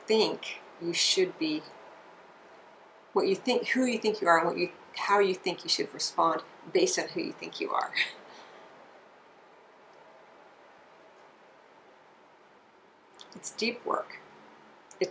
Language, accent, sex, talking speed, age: English, American, female, 125 wpm, 40-59